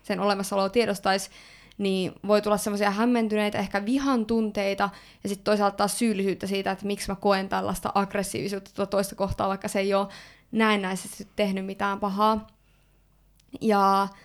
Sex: female